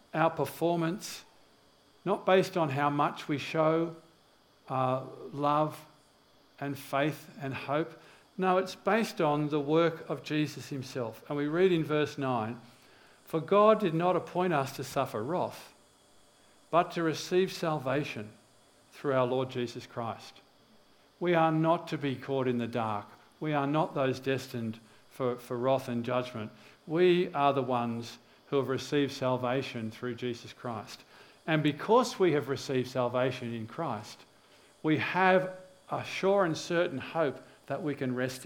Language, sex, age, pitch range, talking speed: English, male, 50-69, 125-160 Hz, 150 wpm